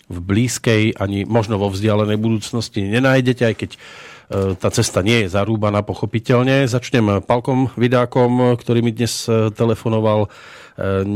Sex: male